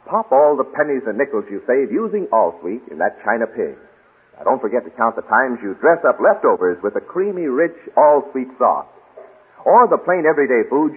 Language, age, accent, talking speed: English, 50-69, American, 210 wpm